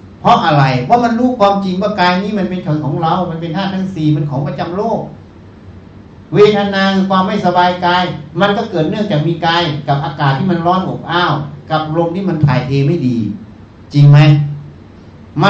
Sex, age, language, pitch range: male, 60-79, Thai, 115-175 Hz